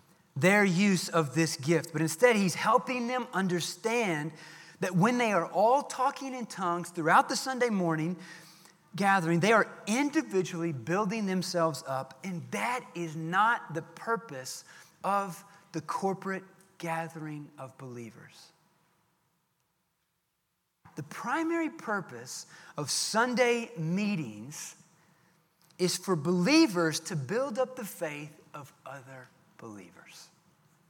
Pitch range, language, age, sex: 160-190 Hz, English, 30-49, male